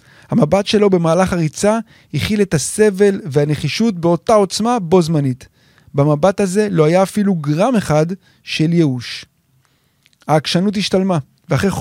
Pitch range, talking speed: 150-210 Hz, 120 wpm